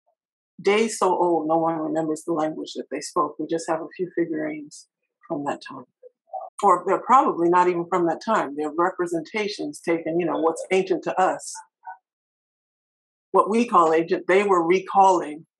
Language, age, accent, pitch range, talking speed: English, 50-69, American, 170-245 Hz, 170 wpm